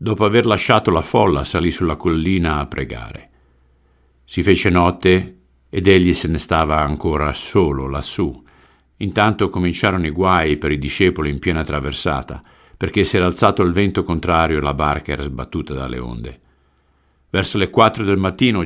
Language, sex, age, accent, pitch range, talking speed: Italian, male, 50-69, native, 75-95 Hz, 160 wpm